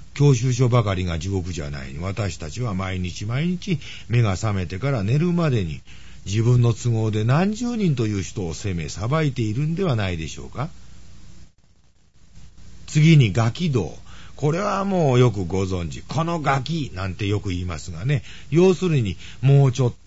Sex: male